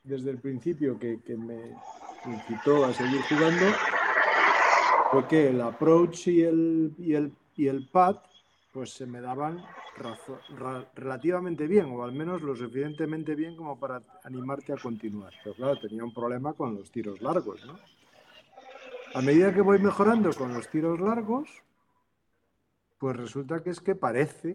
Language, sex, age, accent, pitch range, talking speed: Spanish, male, 40-59, Spanish, 125-170 Hz, 160 wpm